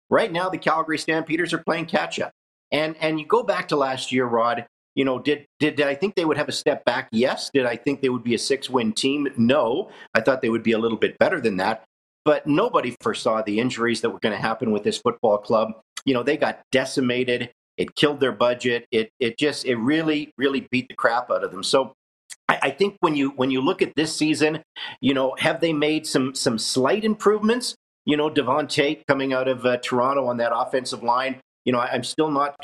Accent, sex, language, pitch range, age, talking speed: American, male, English, 125-150 Hz, 50-69, 235 wpm